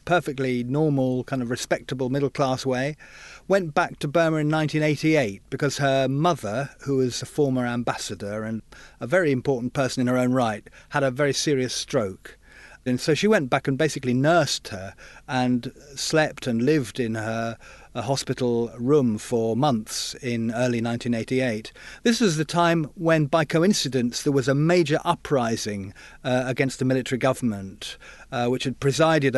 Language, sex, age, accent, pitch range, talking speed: English, male, 40-59, British, 125-150 Hz, 165 wpm